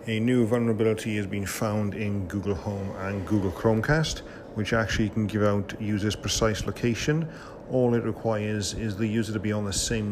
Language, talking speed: English, 185 wpm